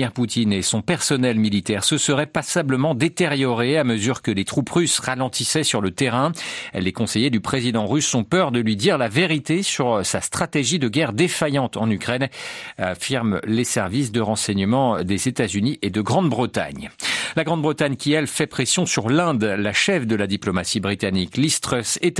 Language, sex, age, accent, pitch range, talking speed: French, male, 50-69, French, 110-150 Hz, 175 wpm